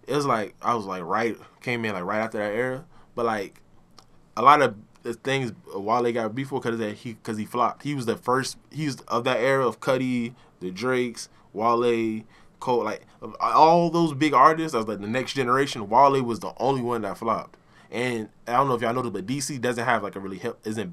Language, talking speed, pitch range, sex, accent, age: English, 225 wpm, 105-130 Hz, male, American, 20-39